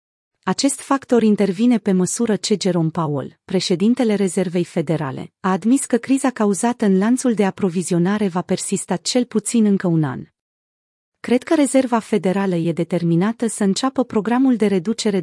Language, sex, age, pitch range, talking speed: Romanian, female, 30-49, 180-225 Hz, 150 wpm